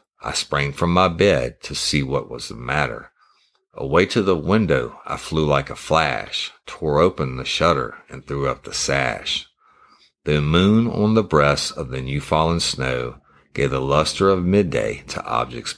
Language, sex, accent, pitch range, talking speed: English, male, American, 70-90 Hz, 170 wpm